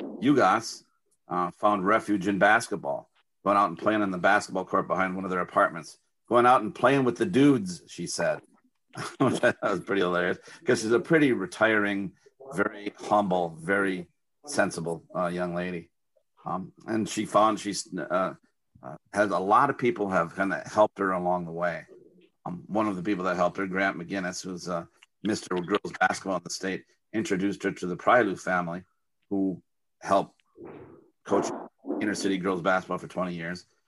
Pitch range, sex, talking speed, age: 90-100 Hz, male, 175 wpm, 50-69